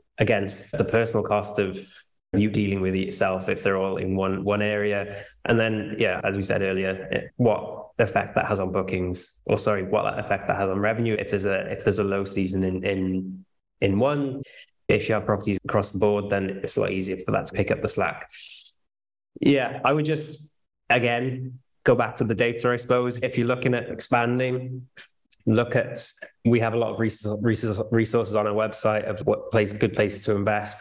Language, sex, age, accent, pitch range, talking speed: English, male, 20-39, British, 100-115 Hz, 210 wpm